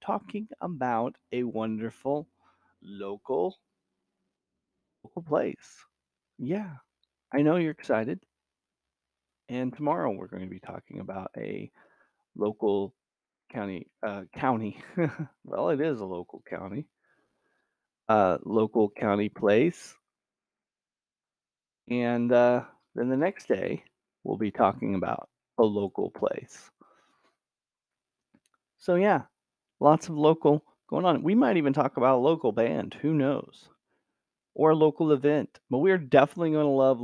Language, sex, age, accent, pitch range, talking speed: English, male, 30-49, American, 105-140 Hz, 120 wpm